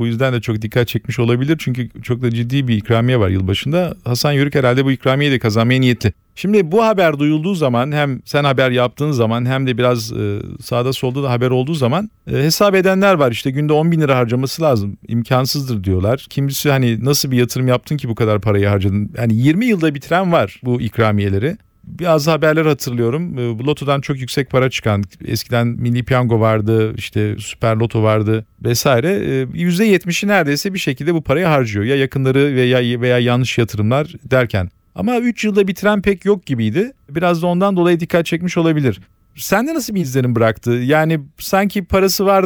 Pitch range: 120-160 Hz